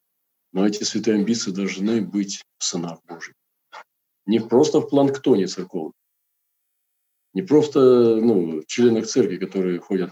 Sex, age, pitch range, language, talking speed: male, 40-59, 95-115 Hz, Russian, 130 wpm